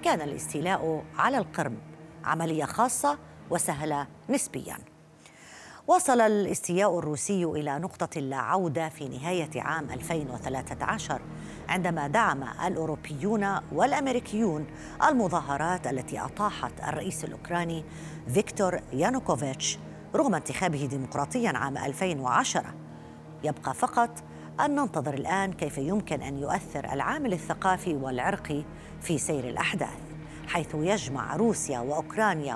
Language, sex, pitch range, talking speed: Arabic, female, 145-195 Hz, 100 wpm